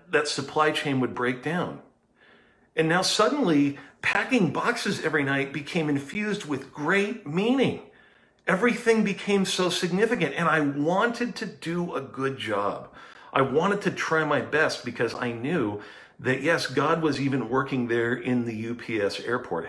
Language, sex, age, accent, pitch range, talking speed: English, male, 50-69, American, 115-155 Hz, 150 wpm